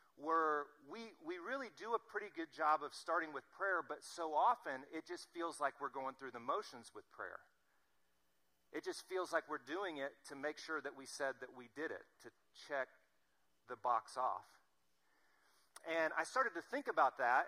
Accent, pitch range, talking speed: American, 135-180 Hz, 190 wpm